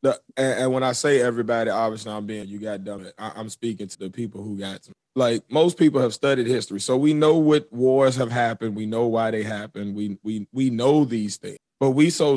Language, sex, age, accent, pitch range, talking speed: English, male, 30-49, American, 110-140 Hz, 230 wpm